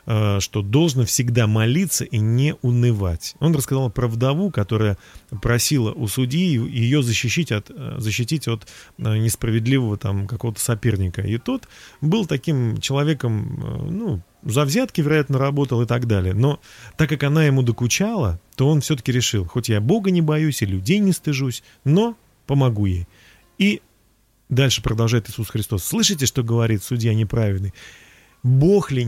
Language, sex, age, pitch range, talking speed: Russian, male, 30-49, 110-150 Hz, 145 wpm